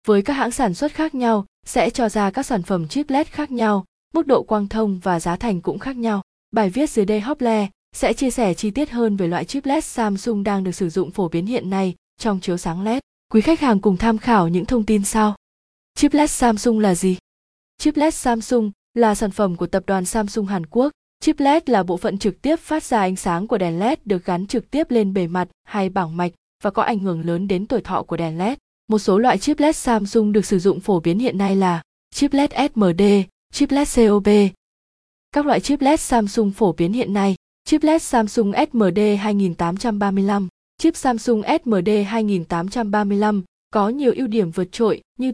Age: 20-39